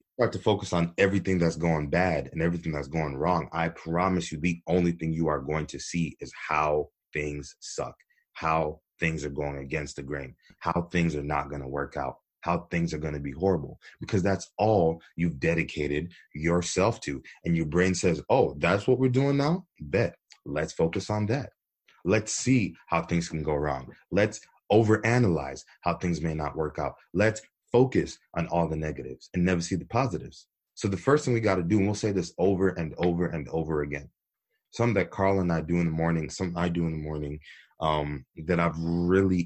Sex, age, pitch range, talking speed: male, 30-49, 75-90 Hz, 205 wpm